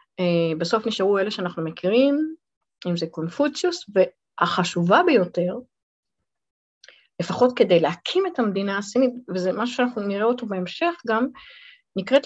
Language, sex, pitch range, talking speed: Hebrew, female, 185-270 Hz, 115 wpm